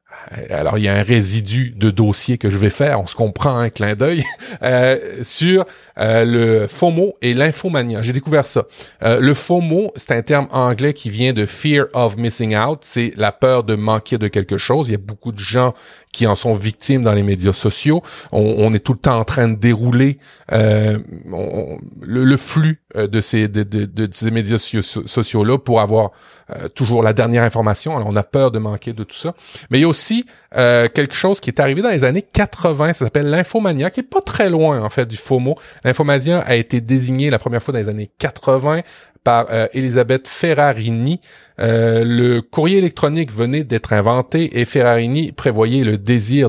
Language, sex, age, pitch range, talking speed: French, male, 40-59, 110-140 Hz, 205 wpm